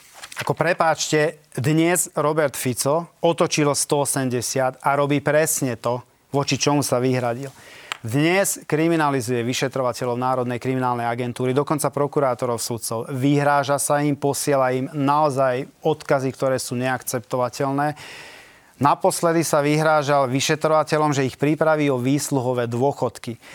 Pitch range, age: 130-150 Hz, 30-49